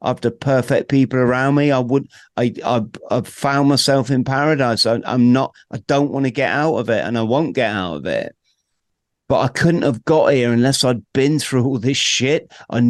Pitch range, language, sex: 120-145 Hz, English, male